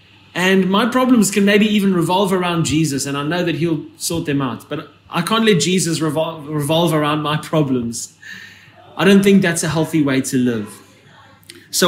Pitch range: 135-195 Hz